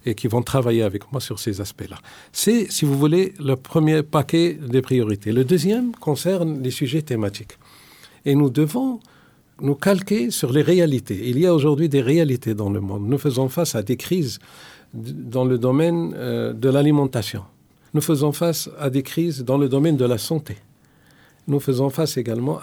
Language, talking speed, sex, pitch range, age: French, 185 wpm, male, 120-160 Hz, 50-69